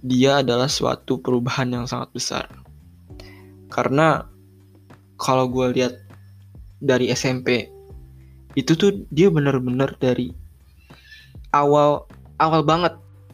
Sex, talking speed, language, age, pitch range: male, 95 wpm, Indonesian, 20-39, 100-145 Hz